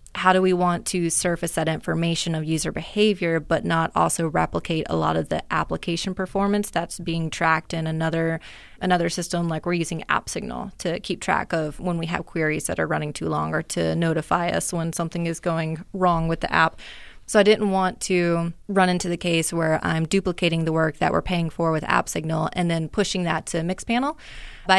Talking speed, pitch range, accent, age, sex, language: 210 wpm, 165-190 Hz, American, 20-39, female, English